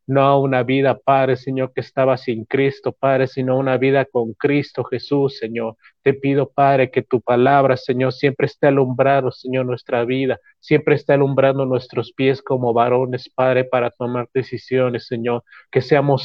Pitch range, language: 125-135 Hz, Spanish